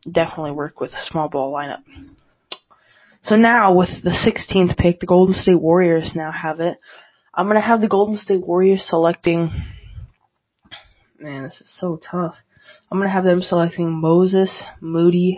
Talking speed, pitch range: 165 wpm, 165-185 Hz